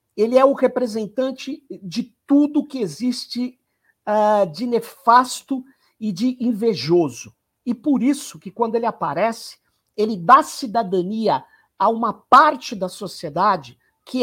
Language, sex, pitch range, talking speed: Portuguese, male, 210-285 Hz, 125 wpm